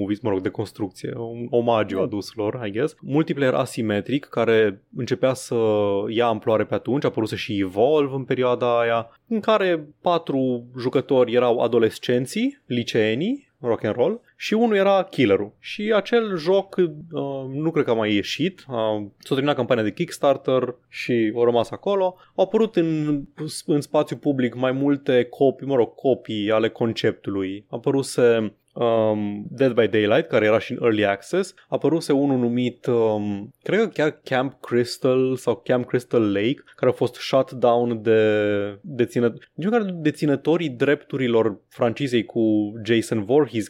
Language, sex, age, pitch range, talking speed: Romanian, male, 20-39, 115-150 Hz, 155 wpm